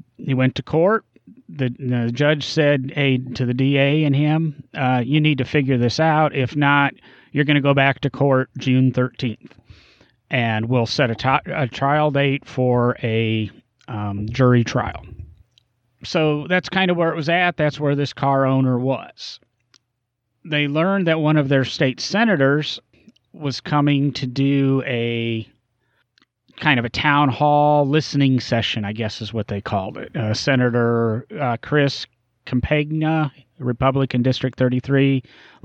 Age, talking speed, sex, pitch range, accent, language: 30-49, 155 wpm, male, 120-145 Hz, American, English